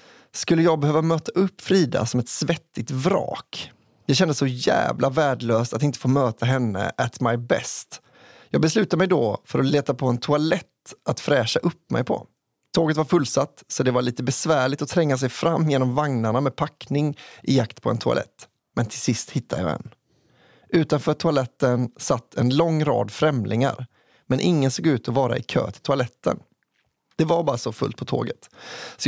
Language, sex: English, male